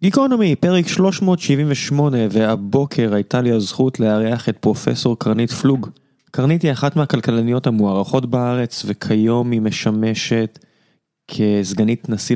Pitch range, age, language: 105-120 Hz, 20-39, Hebrew